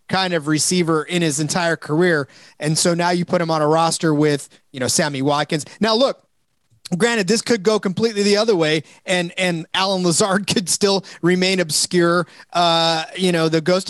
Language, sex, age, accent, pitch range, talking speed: English, male, 30-49, American, 155-185 Hz, 190 wpm